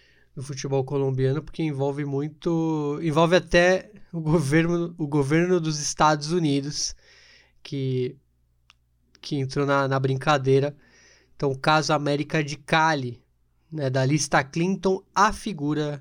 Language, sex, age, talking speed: Portuguese, male, 20-39, 125 wpm